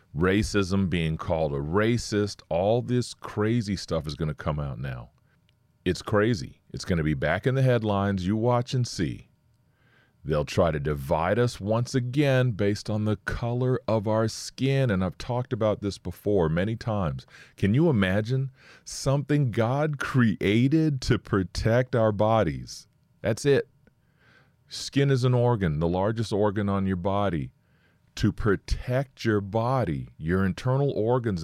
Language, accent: English, American